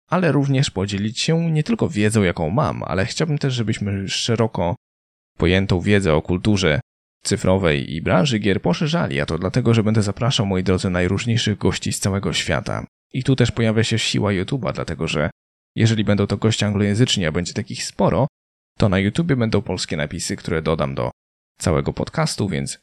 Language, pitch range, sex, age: Polish, 85-115 Hz, male, 20-39